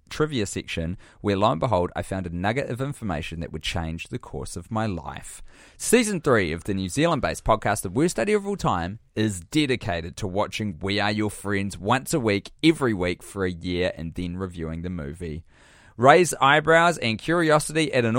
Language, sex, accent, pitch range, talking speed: English, male, Australian, 90-125 Hz, 200 wpm